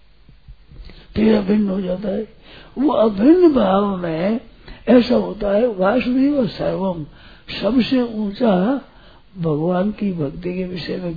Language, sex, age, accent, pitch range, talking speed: Hindi, male, 60-79, native, 180-225 Hz, 115 wpm